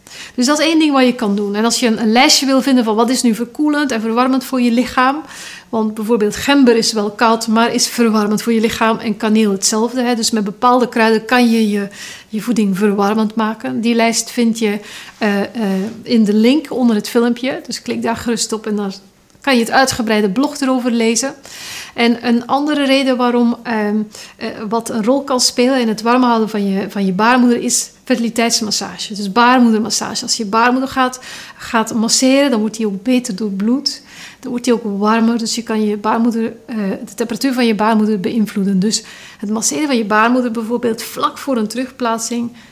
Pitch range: 220-255 Hz